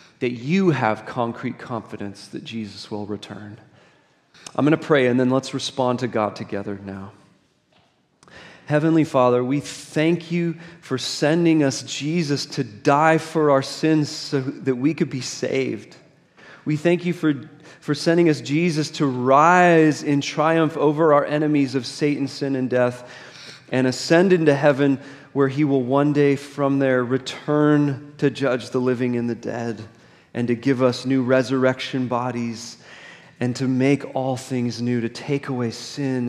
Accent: American